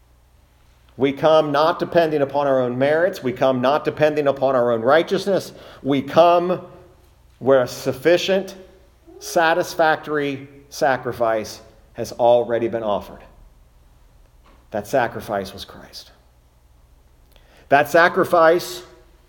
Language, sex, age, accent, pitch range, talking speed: English, male, 50-69, American, 120-170 Hz, 105 wpm